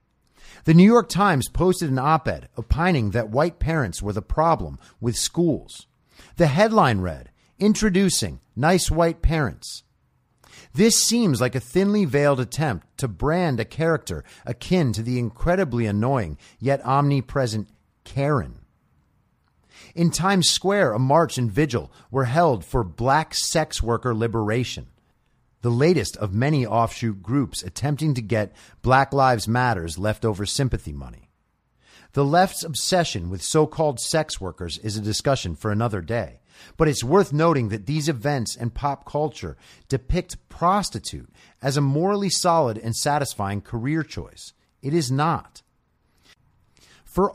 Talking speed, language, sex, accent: 135 wpm, English, male, American